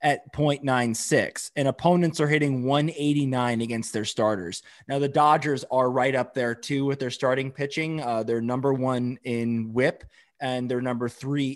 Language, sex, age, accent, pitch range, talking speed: English, male, 20-39, American, 125-155 Hz, 165 wpm